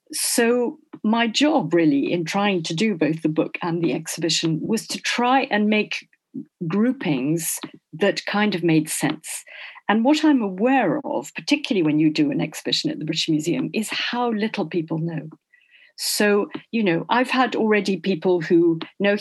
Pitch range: 175-265 Hz